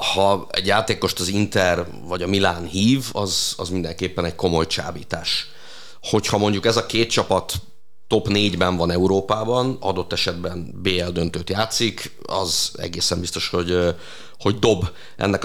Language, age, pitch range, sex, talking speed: Hungarian, 30-49, 95-110 Hz, male, 145 wpm